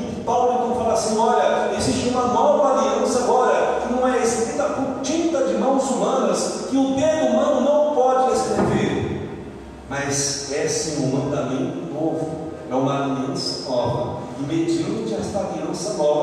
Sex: male